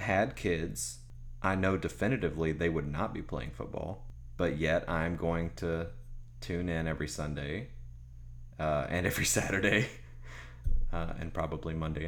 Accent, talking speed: American, 140 wpm